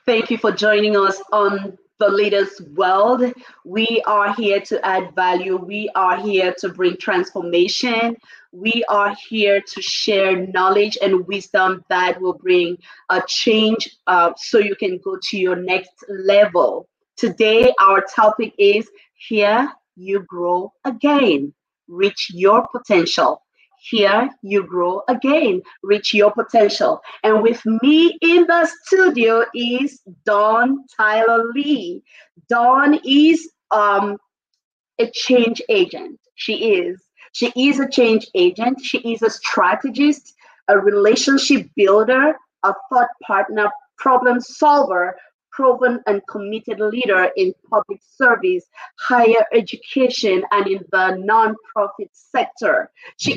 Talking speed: 125 wpm